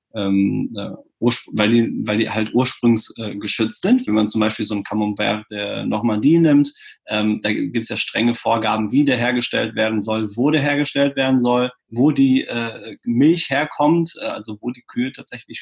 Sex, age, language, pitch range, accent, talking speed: male, 20-39, German, 115-160 Hz, German, 185 wpm